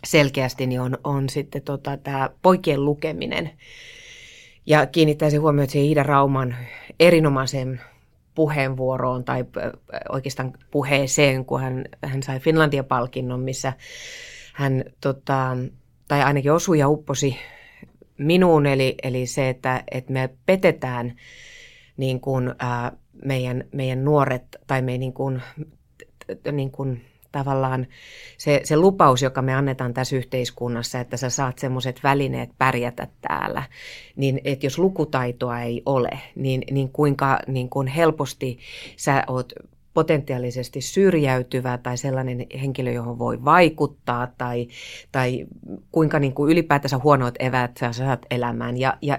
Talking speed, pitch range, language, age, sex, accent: 130 wpm, 130-150 Hz, Finnish, 30-49, female, native